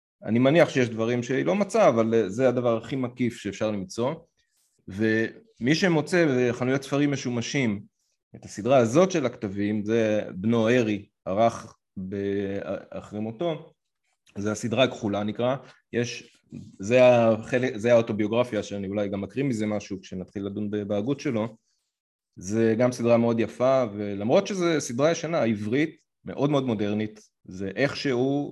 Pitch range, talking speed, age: 105-130 Hz, 135 wpm, 30-49